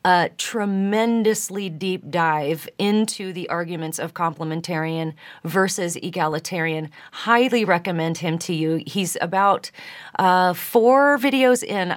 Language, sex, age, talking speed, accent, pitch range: English, female, 40-59, 110 wpm, American, 170-205 Hz